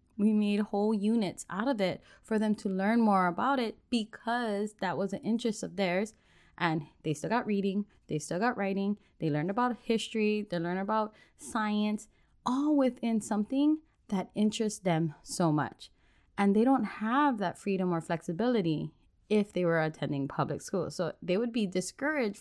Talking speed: 175 wpm